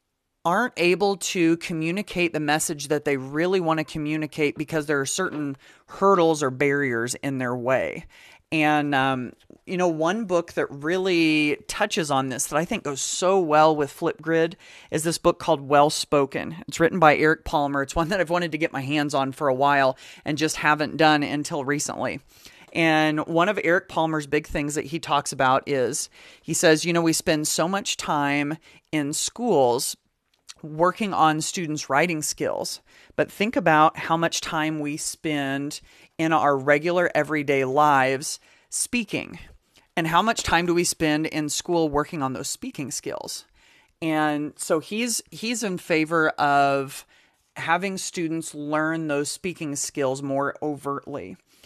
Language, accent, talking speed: English, American, 165 wpm